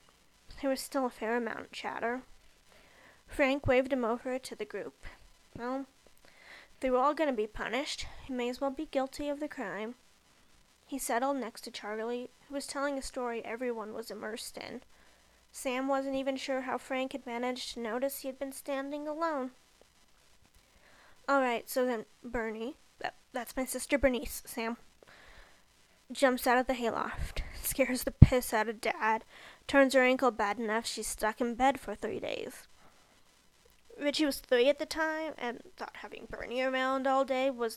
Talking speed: 170 wpm